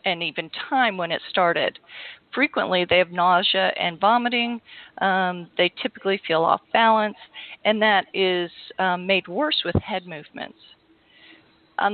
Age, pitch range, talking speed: 40-59, 180-220 Hz, 140 wpm